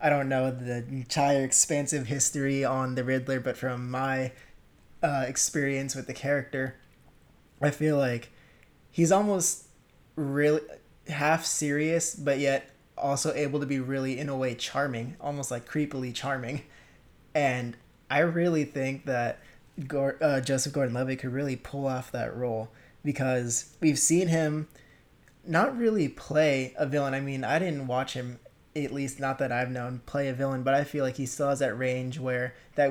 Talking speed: 165 wpm